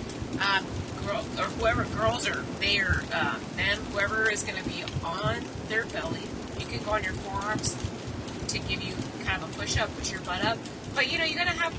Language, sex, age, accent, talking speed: English, female, 30-49, American, 215 wpm